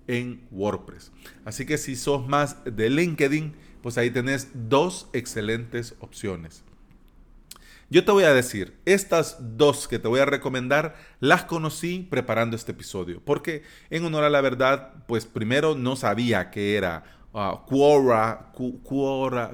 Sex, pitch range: male, 110-145 Hz